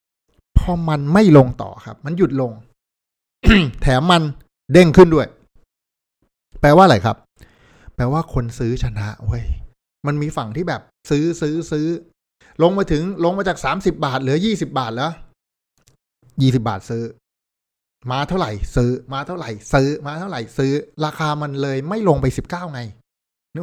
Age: 60-79